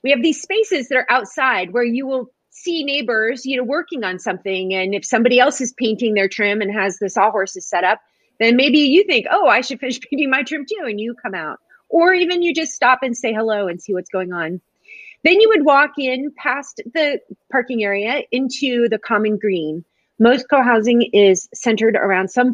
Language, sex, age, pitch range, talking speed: English, female, 30-49, 195-255 Hz, 210 wpm